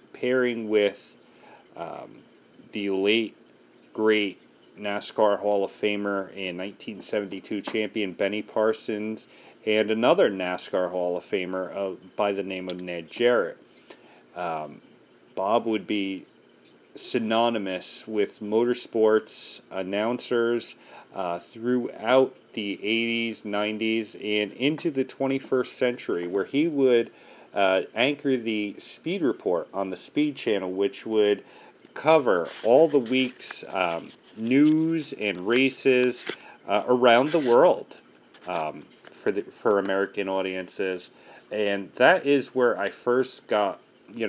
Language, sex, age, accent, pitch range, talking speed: English, male, 40-59, American, 100-125 Hz, 115 wpm